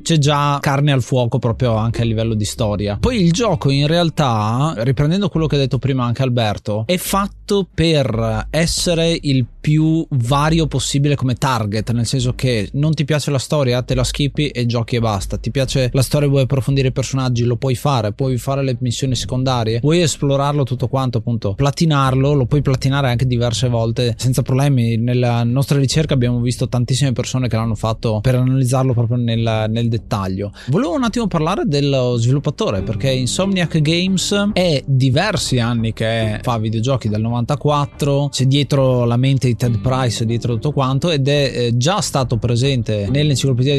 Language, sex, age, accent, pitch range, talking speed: Italian, male, 20-39, native, 120-145 Hz, 175 wpm